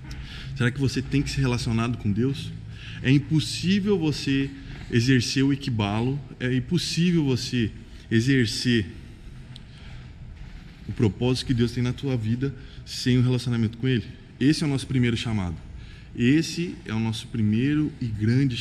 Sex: male